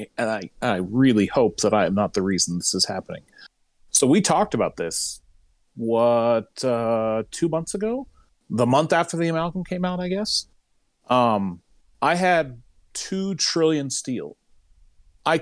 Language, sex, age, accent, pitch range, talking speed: English, male, 40-59, American, 120-165 Hz, 155 wpm